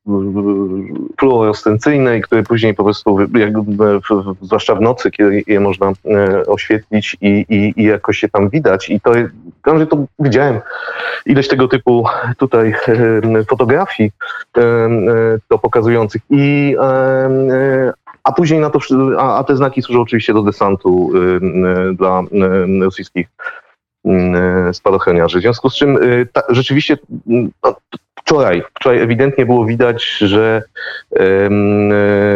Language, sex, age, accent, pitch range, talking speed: Polish, male, 30-49, native, 100-125 Hz, 110 wpm